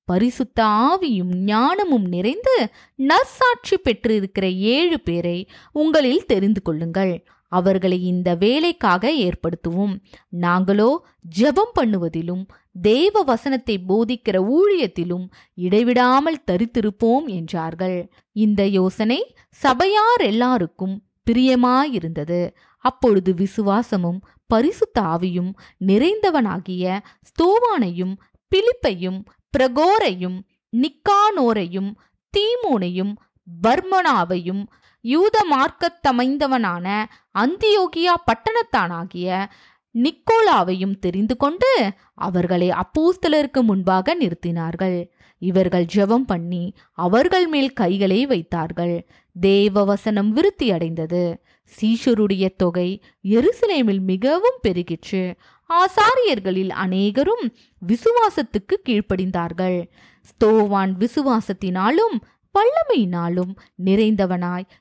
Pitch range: 185-280 Hz